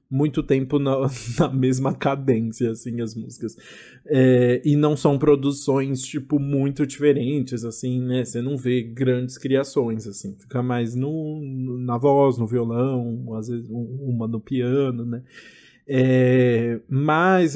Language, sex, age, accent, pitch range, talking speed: Portuguese, male, 20-39, Brazilian, 125-145 Hz, 125 wpm